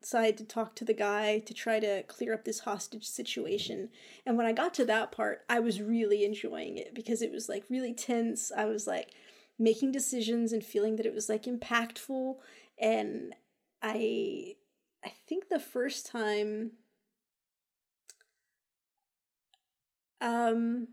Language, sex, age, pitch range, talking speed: English, female, 30-49, 220-265 Hz, 150 wpm